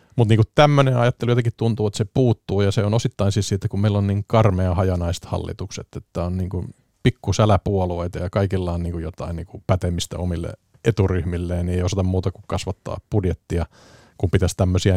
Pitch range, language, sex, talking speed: 90-110 Hz, Finnish, male, 175 wpm